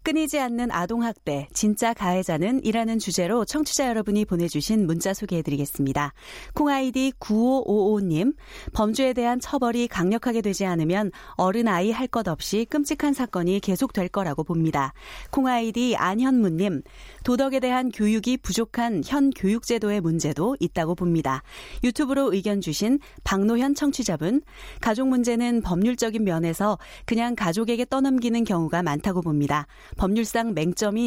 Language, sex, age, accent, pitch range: Korean, female, 30-49, native, 180-245 Hz